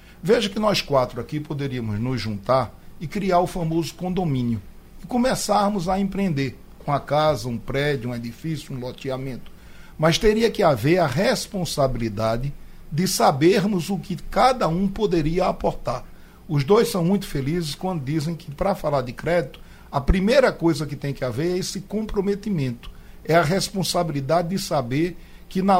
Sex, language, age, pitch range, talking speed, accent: male, Portuguese, 60-79, 130-185 Hz, 160 wpm, Brazilian